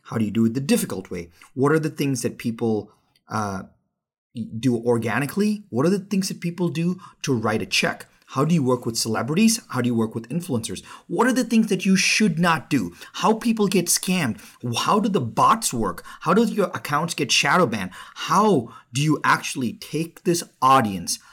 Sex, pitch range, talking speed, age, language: male, 115-170 Hz, 205 wpm, 30-49, English